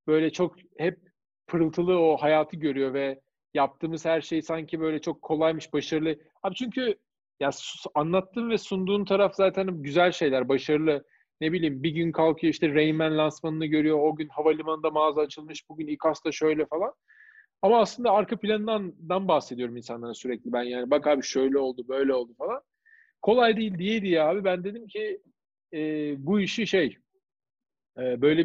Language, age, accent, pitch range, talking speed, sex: Turkish, 40-59, native, 145-180 Hz, 155 wpm, male